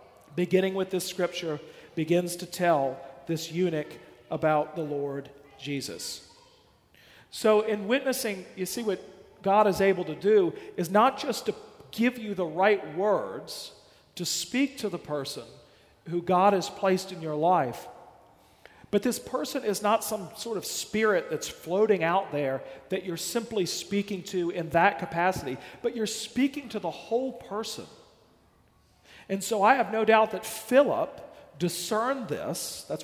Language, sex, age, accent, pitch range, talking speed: English, male, 40-59, American, 170-225 Hz, 155 wpm